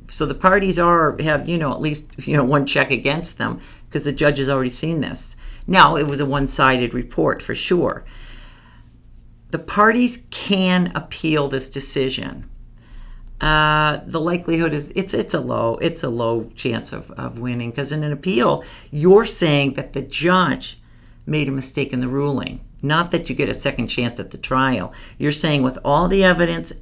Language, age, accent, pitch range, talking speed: English, 50-69, American, 125-155 Hz, 185 wpm